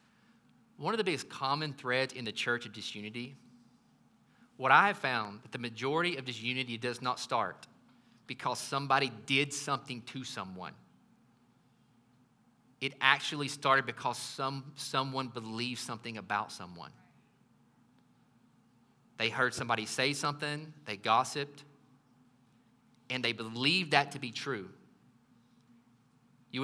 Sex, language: male, English